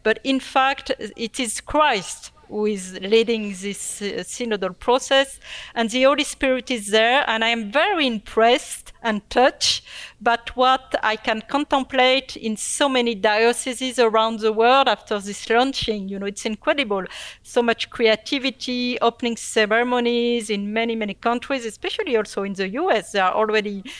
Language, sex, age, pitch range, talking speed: English, female, 40-59, 210-260 Hz, 155 wpm